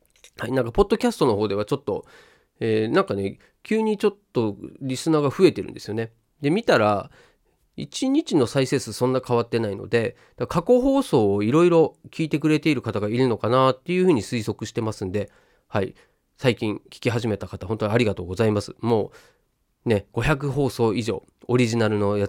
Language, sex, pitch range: Japanese, male, 105-145 Hz